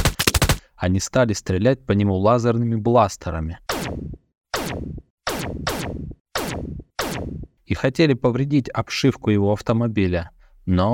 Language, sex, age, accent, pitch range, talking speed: Russian, male, 20-39, native, 90-120 Hz, 75 wpm